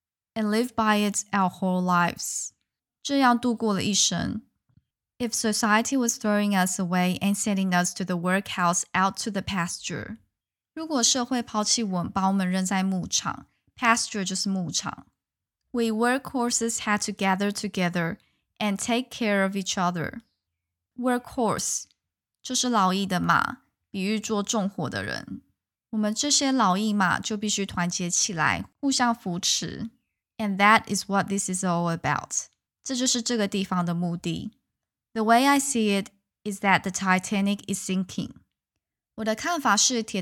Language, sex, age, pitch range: Chinese, female, 10-29, 185-225 Hz